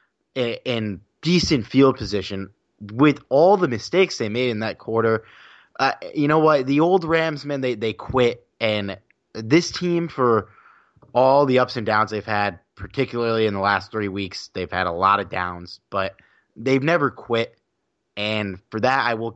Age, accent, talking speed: 20-39, American, 175 wpm